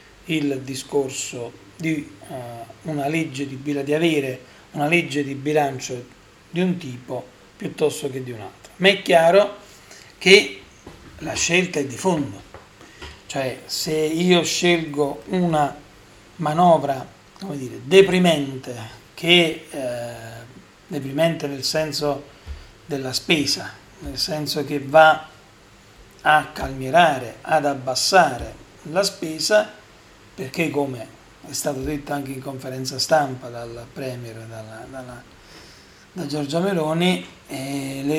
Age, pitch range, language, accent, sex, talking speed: 40-59, 130-160 Hz, Italian, native, male, 105 wpm